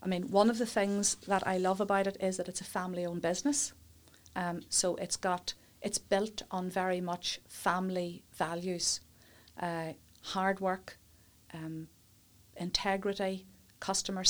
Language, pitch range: English, 175-200 Hz